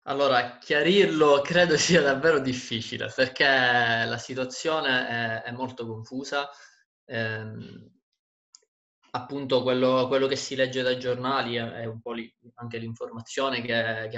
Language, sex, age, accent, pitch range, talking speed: Italian, male, 20-39, native, 115-140 Hz, 125 wpm